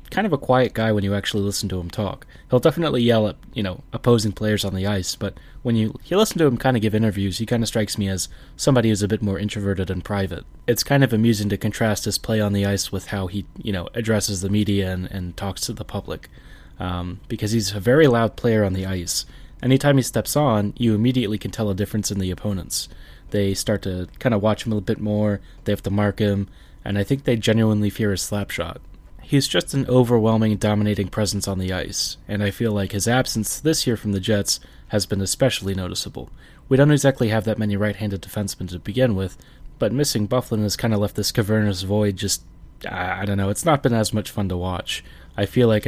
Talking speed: 240 wpm